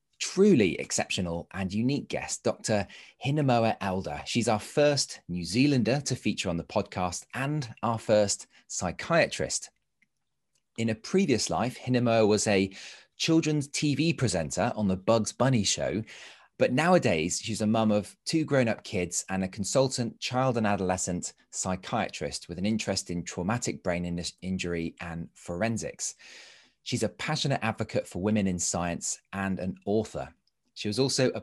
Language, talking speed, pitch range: English, 145 wpm, 90-125 Hz